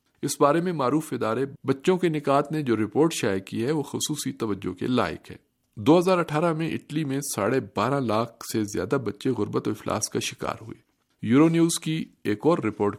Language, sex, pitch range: Urdu, male, 110-150 Hz